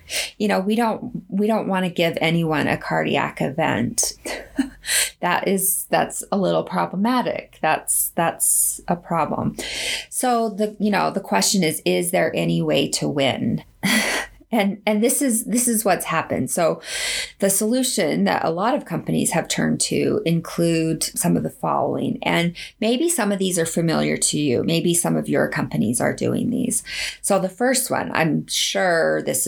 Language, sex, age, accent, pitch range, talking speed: English, female, 30-49, American, 165-220 Hz, 170 wpm